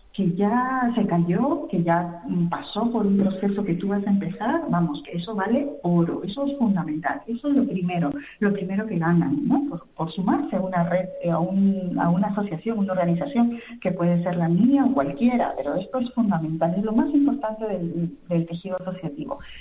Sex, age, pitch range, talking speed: female, 40-59, 175-220 Hz, 190 wpm